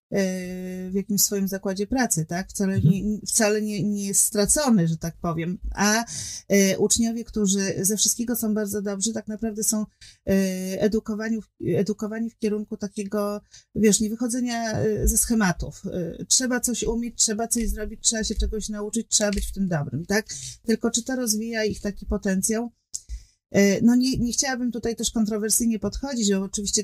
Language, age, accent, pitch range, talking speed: Polish, 30-49, native, 195-225 Hz, 155 wpm